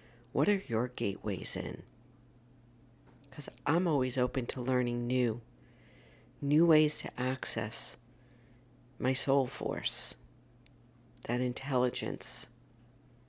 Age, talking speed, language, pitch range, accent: 50-69, 95 wpm, English, 120-130 Hz, American